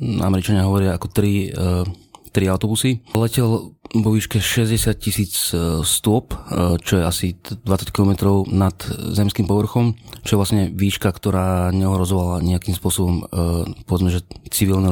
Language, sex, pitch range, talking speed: Slovak, male, 95-110 Hz, 125 wpm